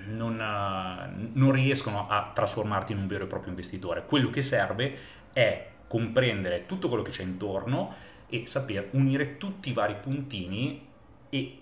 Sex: male